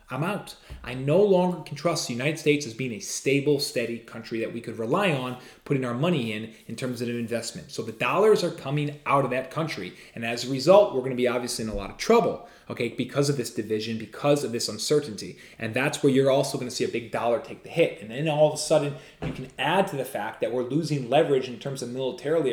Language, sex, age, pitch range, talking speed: English, male, 30-49, 120-150 Hz, 255 wpm